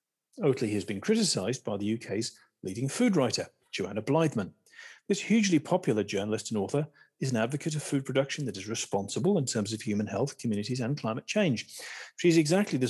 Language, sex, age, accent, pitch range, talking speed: English, male, 40-59, British, 110-155 Hz, 180 wpm